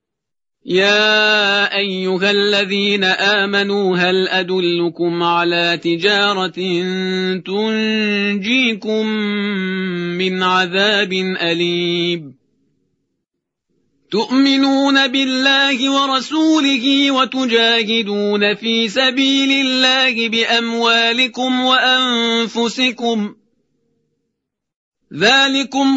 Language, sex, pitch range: Persian, male, 195-250 Hz